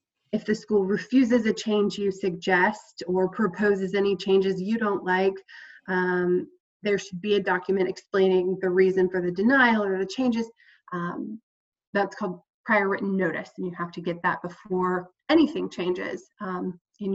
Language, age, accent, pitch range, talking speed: English, 20-39, American, 185-210 Hz, 165 wpm